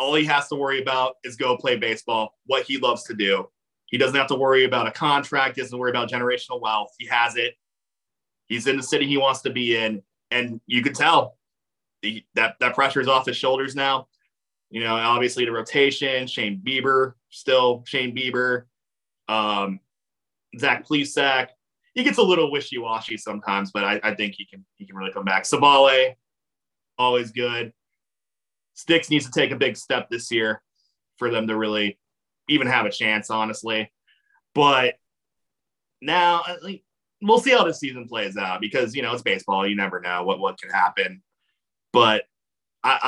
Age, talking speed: 30-49, 175 wpm